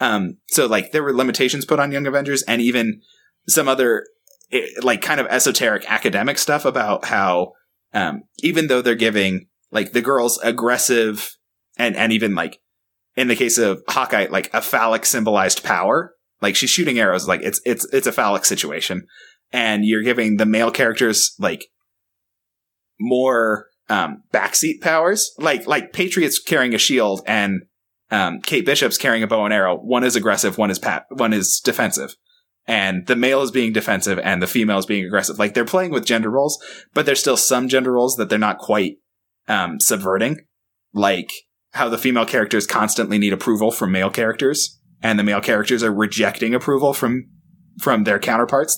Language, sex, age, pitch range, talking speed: English, male, 20-39, 105-140 Hz, 175 wpm